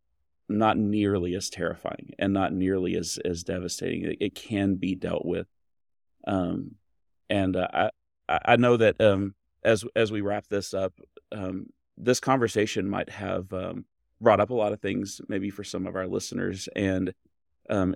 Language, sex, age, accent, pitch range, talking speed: English, male, 30-49, American, 95-105 Hz, 165 wpm